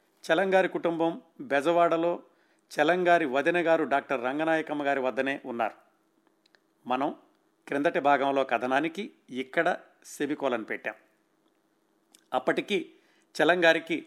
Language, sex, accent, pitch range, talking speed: Telugu, male, native, 145-215 Hz, 85 wpm